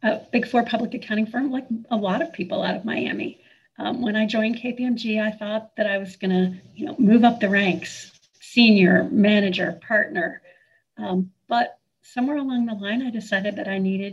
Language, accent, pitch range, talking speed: English, American, 205-245 Hz, 190 wpm